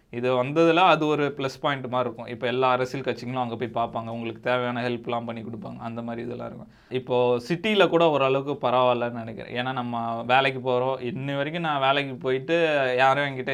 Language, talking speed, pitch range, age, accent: Tamil, 180 wpm, 120-145 Hz, 20-39, native